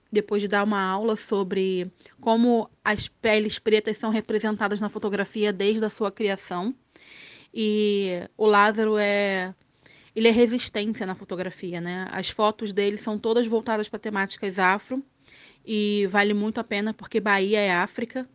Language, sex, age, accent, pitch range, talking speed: Portuguese, female, 20-39, Brazilian, 200-225 Hz, 150 wpm